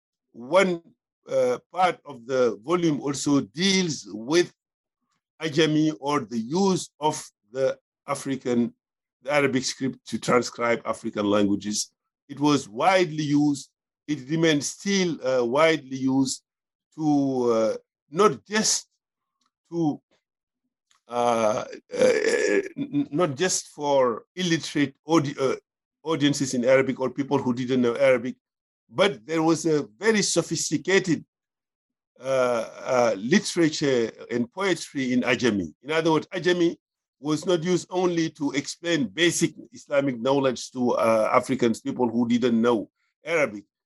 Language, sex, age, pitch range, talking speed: English, male, 50-69, 125-170 Hz, 125 wpm